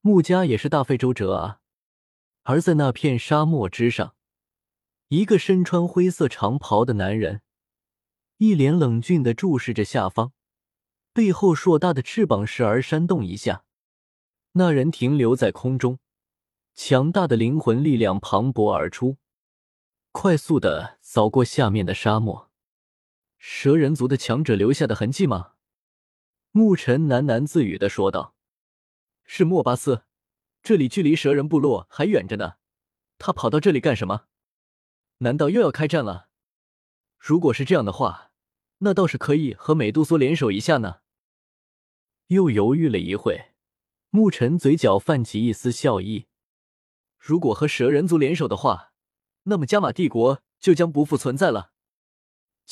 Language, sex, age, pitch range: Chinese, male, 20-39, 110-165 Hz